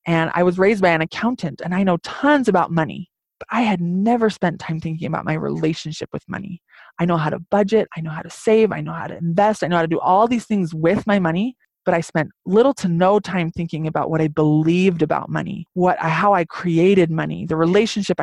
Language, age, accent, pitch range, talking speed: English, 20-39, American, 165-210 Hz, 235 wpm